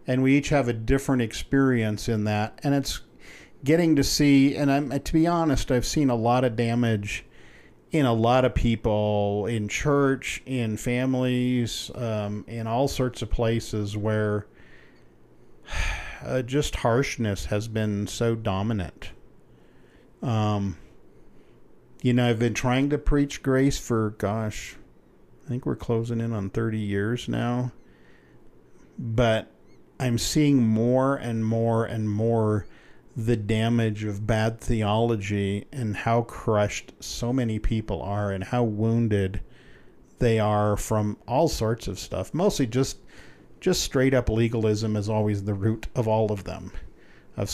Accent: American